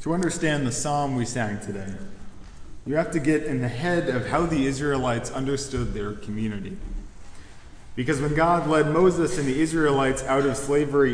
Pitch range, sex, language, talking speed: 110-145 Hz, male, English, 170 wpm